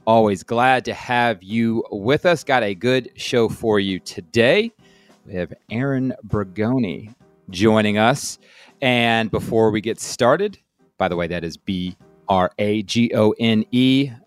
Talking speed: 130 wpm